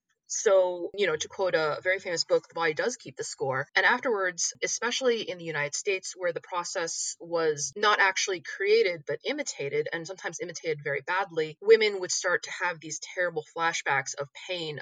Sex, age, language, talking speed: female, 20-39, English, 185 wpm